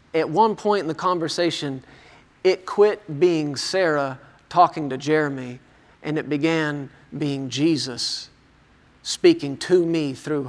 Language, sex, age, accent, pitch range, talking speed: English, male, 40-59, American, 140-185 Hz, 125 wpm